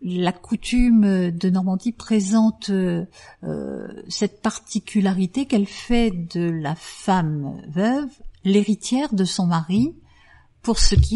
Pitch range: 165-215 Hz